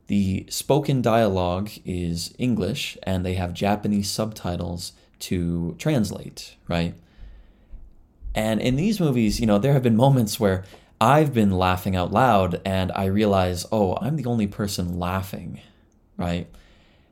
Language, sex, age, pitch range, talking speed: English, male, 20-39, 90-125 Hz, 135 wpm